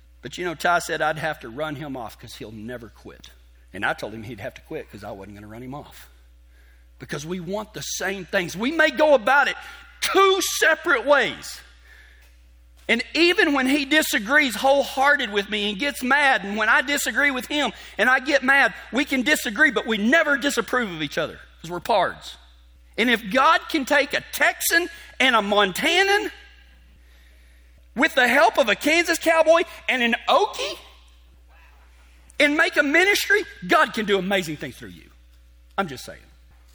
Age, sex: 40-59, male